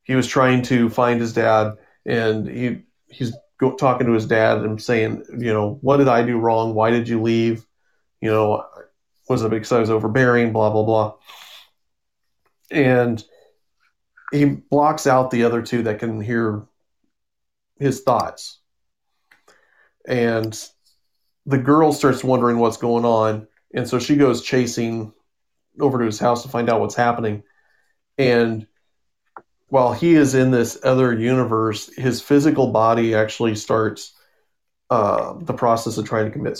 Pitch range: 110-130 Hz